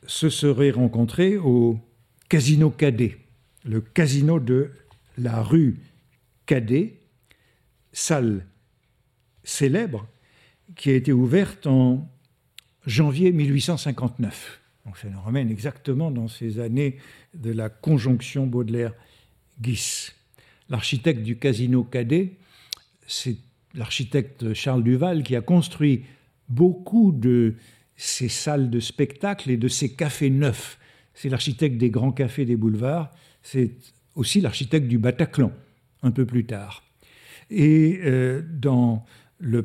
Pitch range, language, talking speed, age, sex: 120-150 Hz, French, 115 wpm, 60-79, male